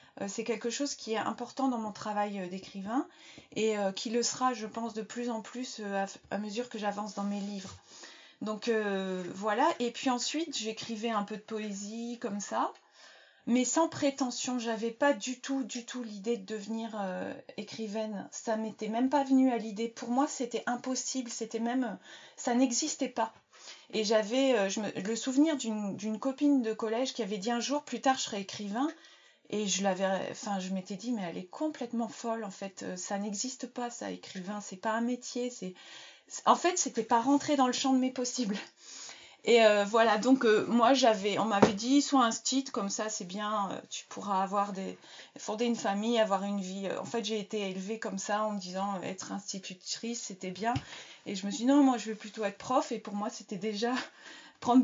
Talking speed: 205 wpm